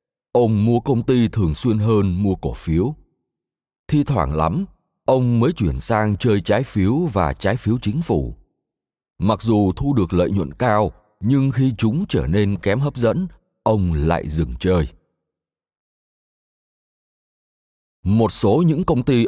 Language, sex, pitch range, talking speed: Vietnamese, male, 90-125 Hz, 155 wpm